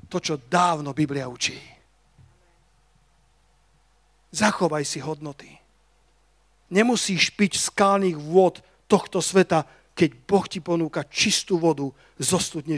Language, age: Slovak, 40-59